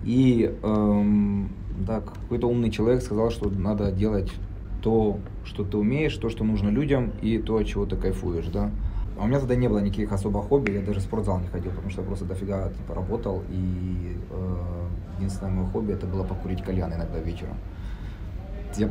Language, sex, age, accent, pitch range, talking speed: Russian, male, 20-39, native, 95-105 Hz, 180 wpm